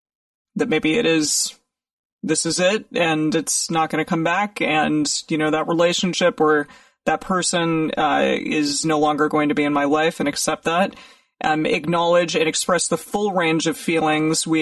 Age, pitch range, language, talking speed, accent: 30-49, 155-205 Hz, English, 185 wpm, American